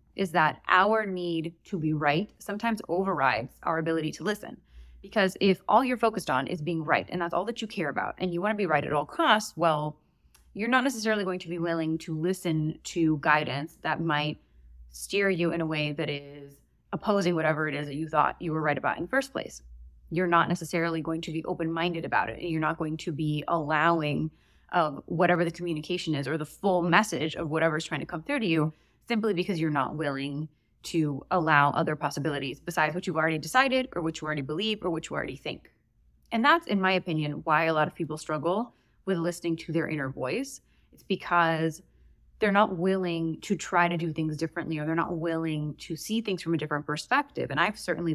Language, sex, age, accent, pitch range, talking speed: English, female, 20-39, American, 155-185 Hz, 215 wpm